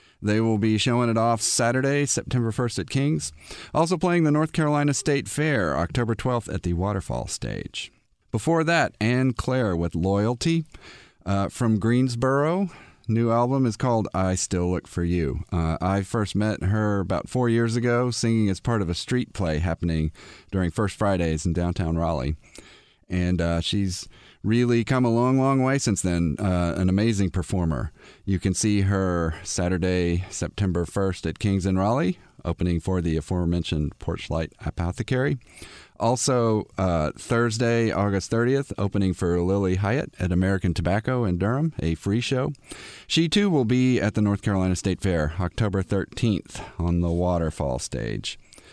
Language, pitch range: English, 90-120 Hz